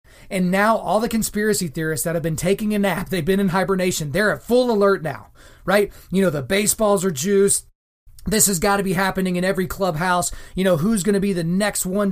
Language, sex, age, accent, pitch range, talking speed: English, male, 30-49, American, 170-210 Hz, 230 wpm